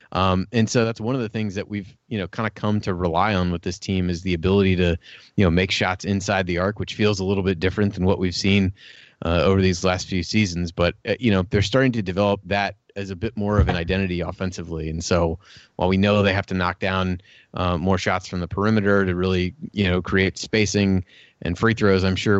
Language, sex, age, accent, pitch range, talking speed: English, male, 30-49, American, 90-100 Hz, 245 wpm